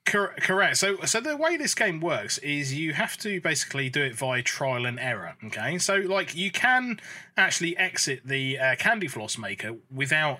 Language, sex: English, male